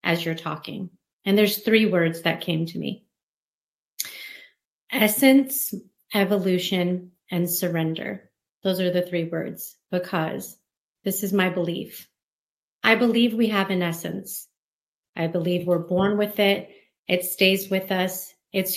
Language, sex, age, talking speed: English, female, 30-49, 135 wpm